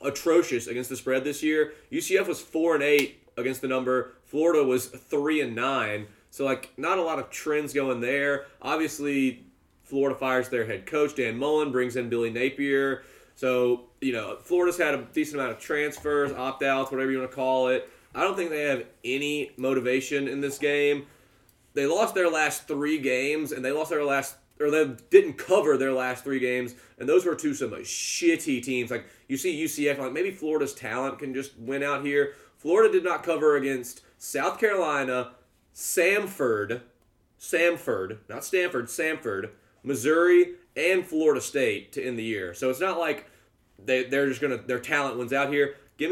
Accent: American